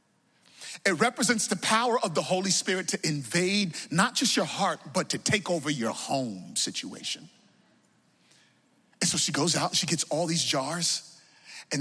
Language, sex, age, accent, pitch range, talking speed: English, male, 30-49, American, 175-220 Hz, 160 wpm